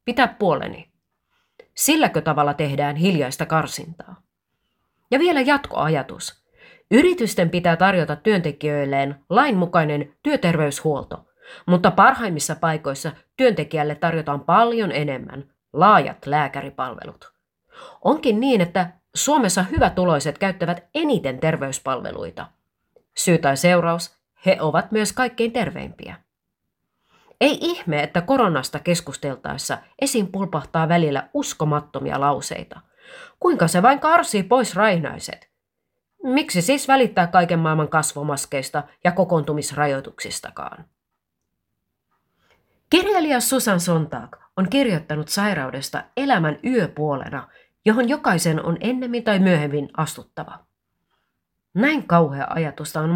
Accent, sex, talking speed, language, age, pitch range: native, female, 95 wpm, Finnish, 30-49, 150-235 Hz